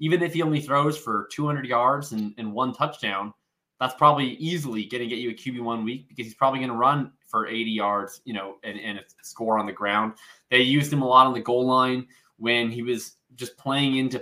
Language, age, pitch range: English, 20-39, 115-135 Hz